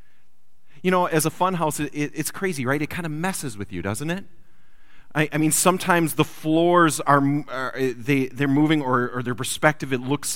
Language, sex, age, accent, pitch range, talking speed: English, male, 30-49, American, 130-185 Hz, 210 wpm